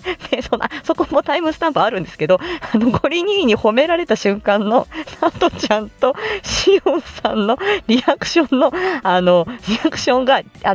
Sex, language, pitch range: female, Japanese, 200-330 Hz